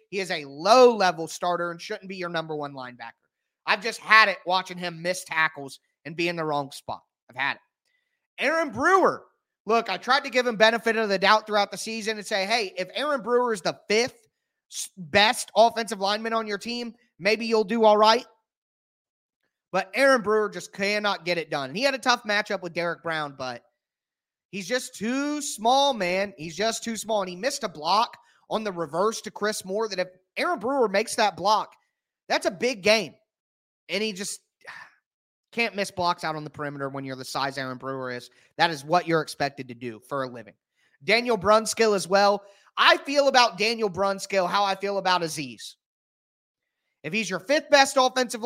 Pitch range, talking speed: 175-235 Hz, 200 wpm